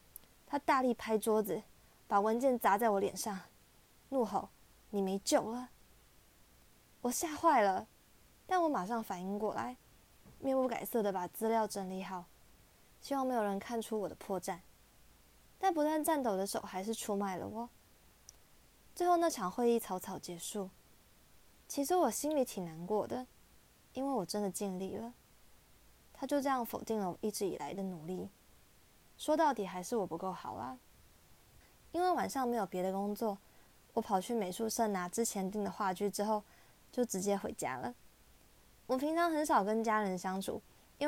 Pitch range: 195-255 Hz